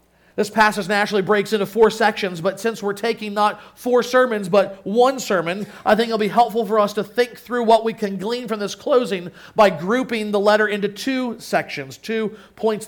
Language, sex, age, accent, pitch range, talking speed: English, male, 40-59, American, 190-230 Hz, 200 wpm